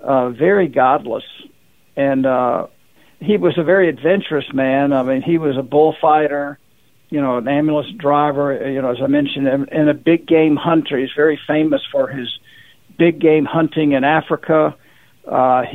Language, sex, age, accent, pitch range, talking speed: English, male, 60-79, American, 140-165 Hz, 170 wpm